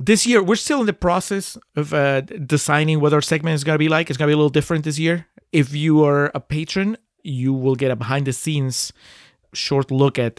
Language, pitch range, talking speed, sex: English, 130-160 Hz, 230 wpm, male